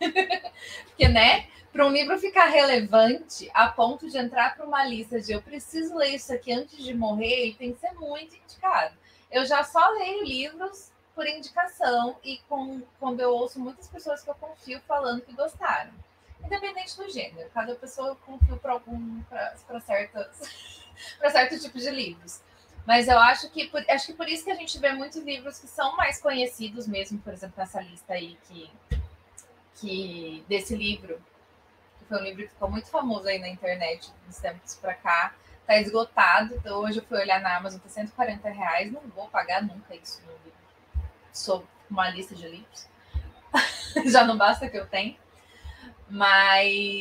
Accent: Brazilian